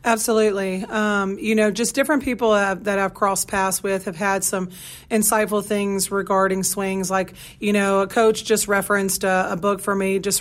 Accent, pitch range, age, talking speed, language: American, 195-210 Hz, 40-59, 195 wpm, English